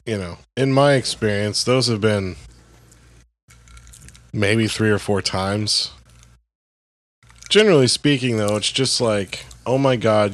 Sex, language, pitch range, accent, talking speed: male, English, 90-115 Hz, American, 130 wpm